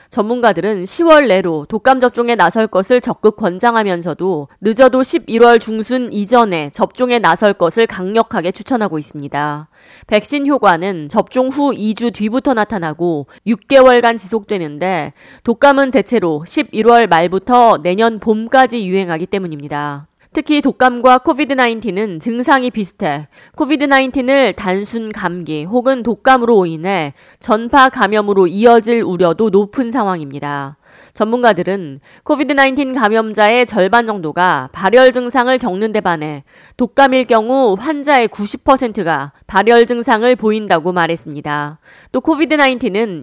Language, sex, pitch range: Korean, female, 180-250 Hz